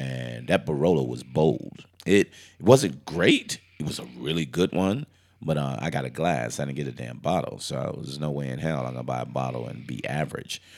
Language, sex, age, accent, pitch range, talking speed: English, male, 30-49, American, 70-85 Hz, 235 wpm